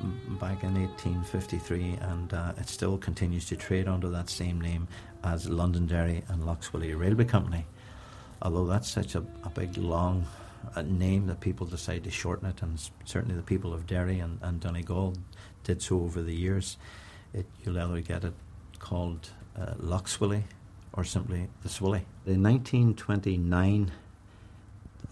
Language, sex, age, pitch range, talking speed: English, male, 60-79, 85-100 Hz, 155 wpm